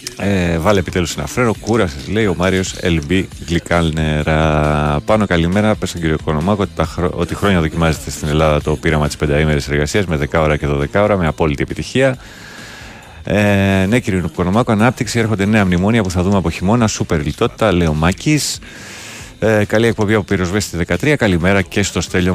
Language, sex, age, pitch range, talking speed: Greek, male, 30-49, 80-105 Hz, 165 wpm